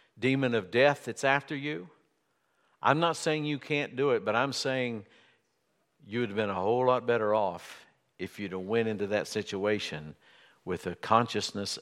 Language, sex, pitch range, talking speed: English, male, 100-135 Hz, 180 wpm